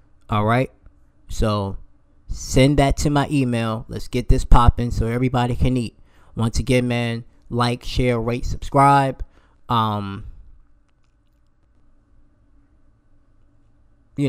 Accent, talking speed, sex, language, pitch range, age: American, 105 wpm, male, English, 105-120 Hz, 20-39